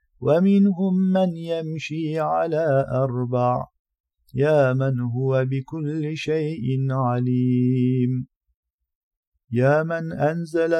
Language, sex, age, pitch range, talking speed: Turkish, male, 50-69, 140-175 Hz, 80 wpm